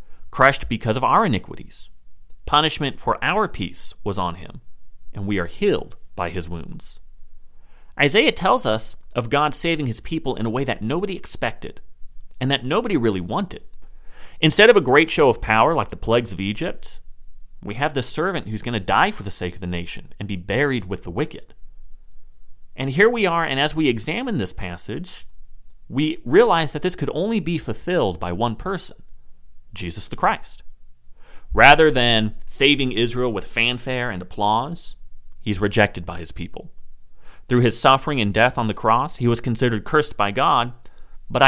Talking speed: 175 wpm